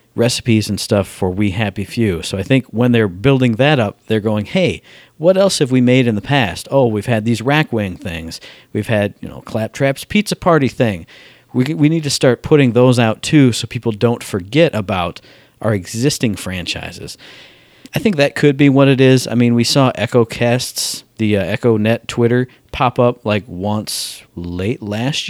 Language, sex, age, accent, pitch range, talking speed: English, male, 40-59, American, 110-140 Hz, 195 wpm